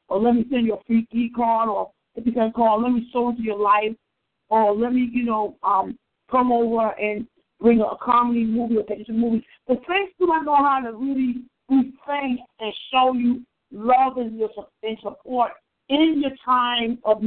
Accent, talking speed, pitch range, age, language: American, 200 wpm, 230-275 Hz, 50-69, English